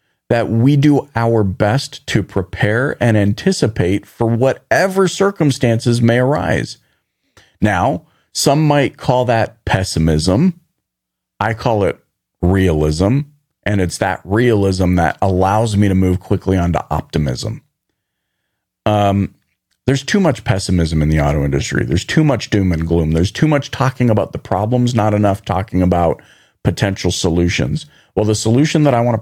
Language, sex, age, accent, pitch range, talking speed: English, male, 40-59, American, 95-130 Hz, 145 wpm